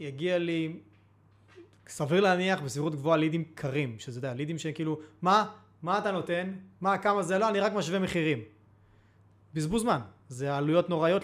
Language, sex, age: Hebrew, male, 30-49